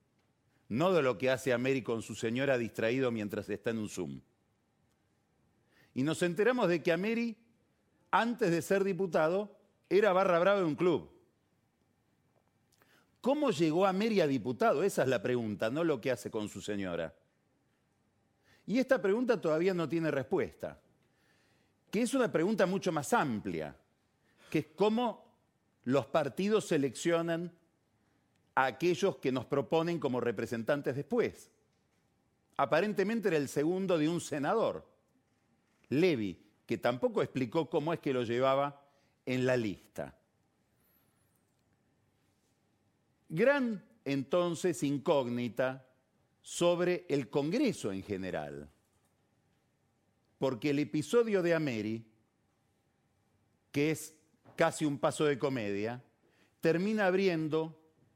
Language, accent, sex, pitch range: Spanish, Argentinian, male, 115-175 Hz